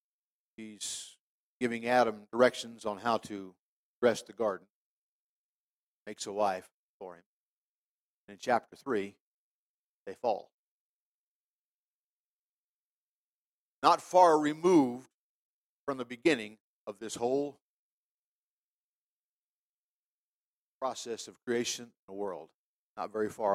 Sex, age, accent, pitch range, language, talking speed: male, 50-69, American, 110-135 Hz, English, 95 wpm